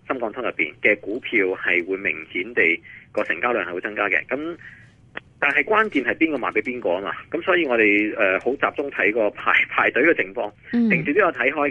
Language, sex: Chinese, male